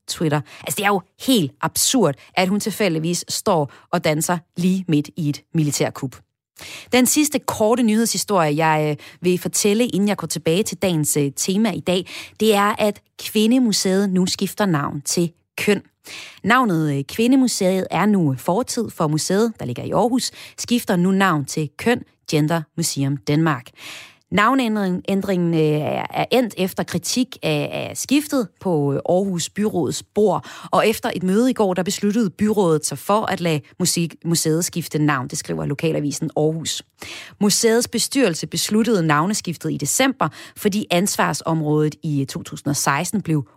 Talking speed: 145 wpm